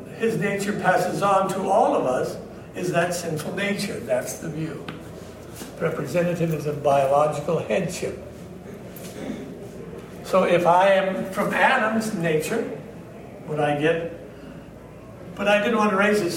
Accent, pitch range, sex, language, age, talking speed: American, 150-195 Hz, male, English, 60-79, 135 wpm